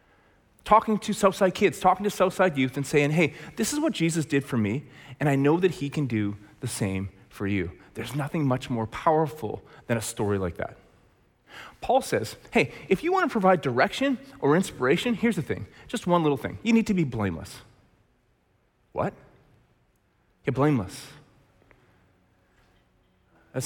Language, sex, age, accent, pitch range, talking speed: English, male, 30-49, American, 125-185 Hz, 165 wpm